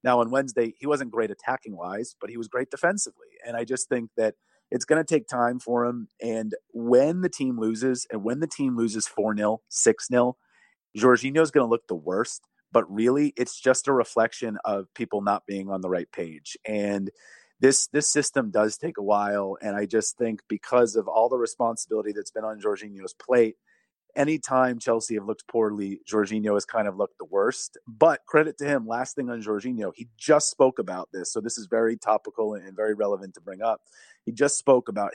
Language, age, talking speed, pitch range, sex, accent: English, 30-49, 200 wpm, 105-125 Hz, male, American